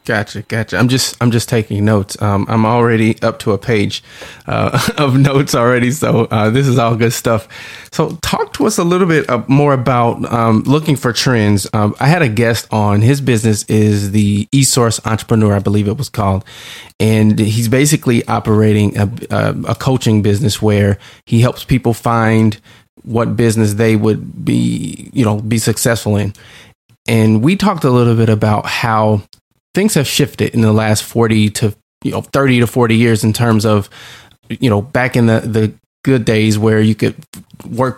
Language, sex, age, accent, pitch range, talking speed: English, male, 20-39, American, 110-130 Hz, 185 wpm